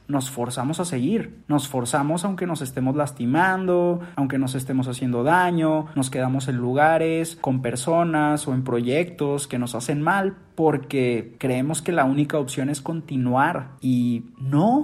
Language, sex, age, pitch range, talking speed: Spanish, male, 30-49, 130-170 Hz, 155 wpm